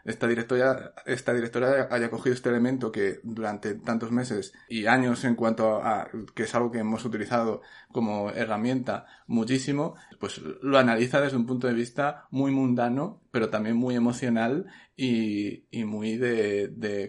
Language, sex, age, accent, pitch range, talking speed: Spanish, male, 30-49, Spanish, 115-135 Hz, 160 wpm